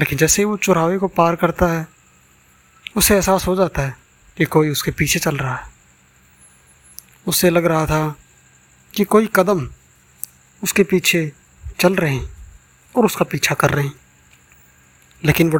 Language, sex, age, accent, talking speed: Hindi, male, 20-39, native, 160 wpm